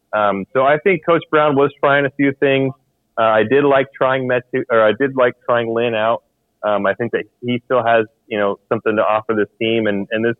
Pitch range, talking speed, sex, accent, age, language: 110-130 Hz, 235 wpm, male, American, 30-49, English